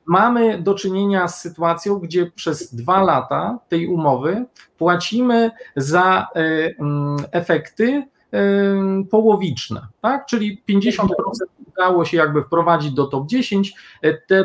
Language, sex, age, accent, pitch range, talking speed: Polish, male, 40-59, native, 150-195 Hz, 105 wpm